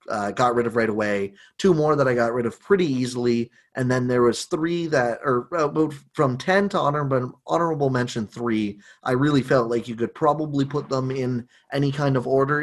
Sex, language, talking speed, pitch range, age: male, English, 205 wpm, 115-150 Hz, 30-49